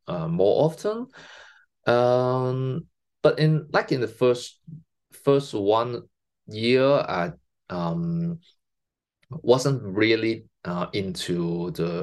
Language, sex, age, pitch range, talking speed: English, male, 20-39, 95-160 Hz, 100 wpm